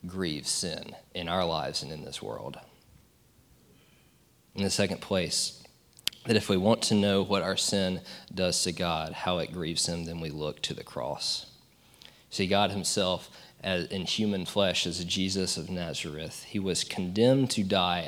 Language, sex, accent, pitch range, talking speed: English, male, American, 85-100 Hz, 175 wpm